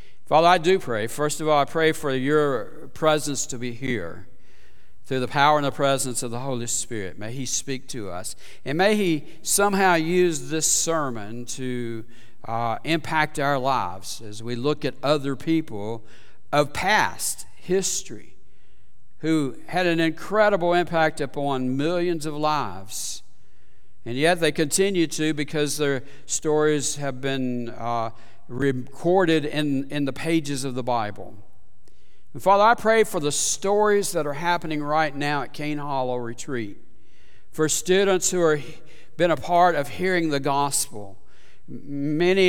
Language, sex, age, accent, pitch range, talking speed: English, male, 60-79, American, 125-165 Hz, 150 wpm